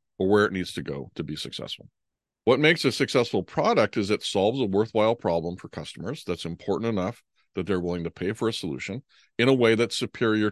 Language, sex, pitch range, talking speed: English, male, 90-115 Hz, 215 wpm